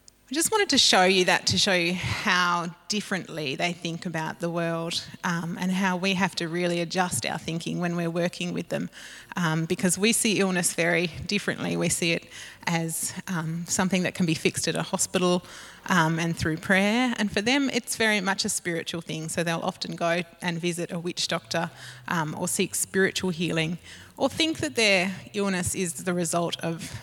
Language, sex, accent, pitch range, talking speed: English, female, Australian, 165-190 Hz, 195 wpm